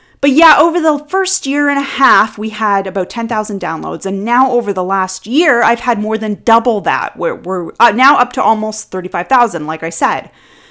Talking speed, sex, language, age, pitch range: 200 wpm, female, English, 30-49, 230-280 Hz